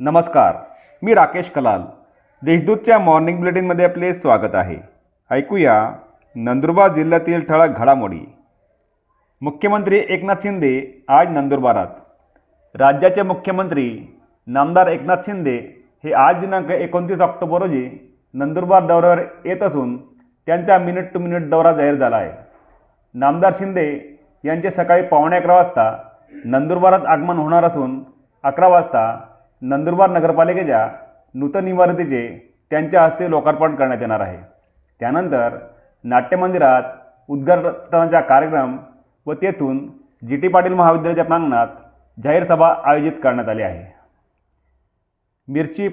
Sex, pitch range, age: male, 135-180 Hz, 40-59